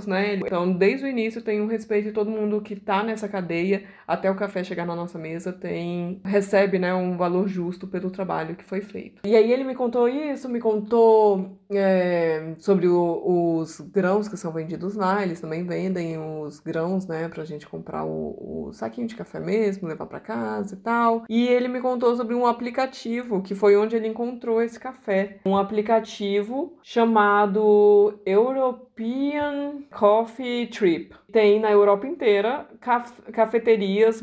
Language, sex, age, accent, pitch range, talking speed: Portuguese, female, 20-39, Brazilian, 185-220 Hz, 170 wpm